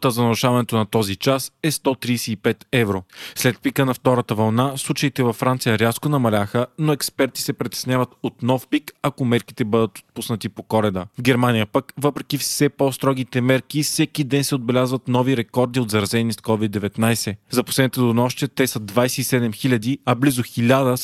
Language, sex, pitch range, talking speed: Bulgarian, male, 115-135 Hz, 165 wpm